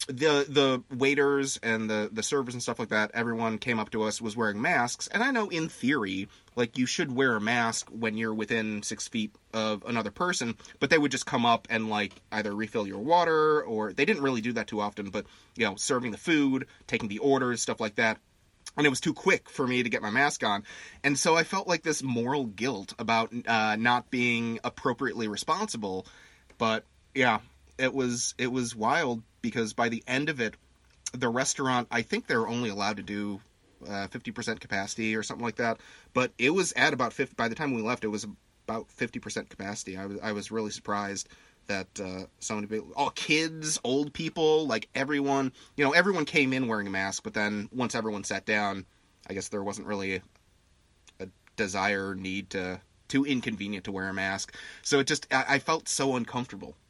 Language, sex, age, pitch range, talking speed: English, male, 30-49, 105-135 Hz, 210 wpm